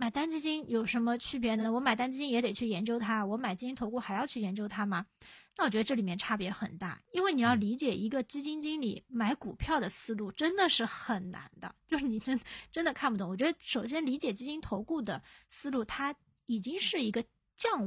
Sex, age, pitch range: female, 20-39, 215-280 Hz